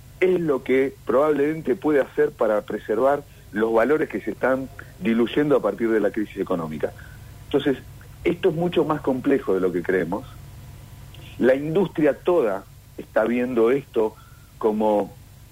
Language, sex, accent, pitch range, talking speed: Spanish, male, Argentinian, 110-135 Hz, 145 wpm